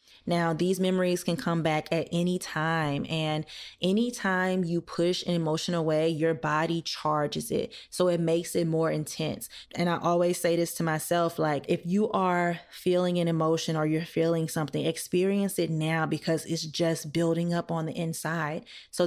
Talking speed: 180 wpm